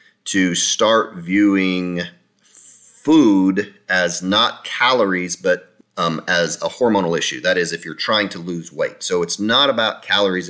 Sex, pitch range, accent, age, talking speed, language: male, 85-100 Hz, American, 30-49, 150 wpm, English